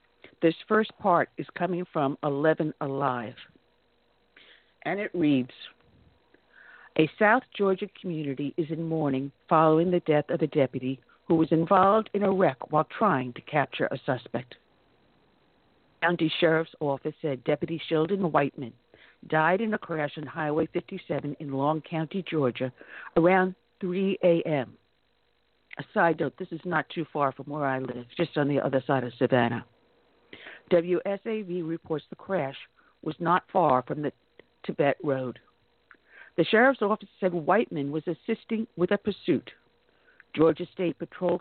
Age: 60-79